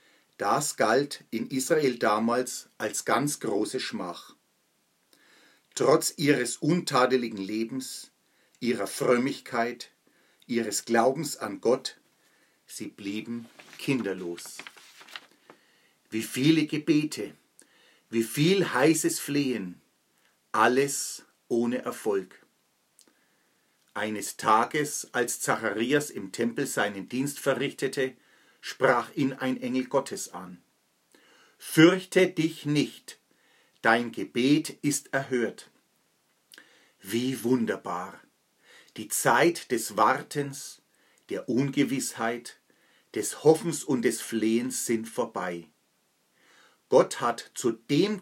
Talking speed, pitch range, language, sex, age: 90 wpm, 115-145 Hz, German, male, 50-69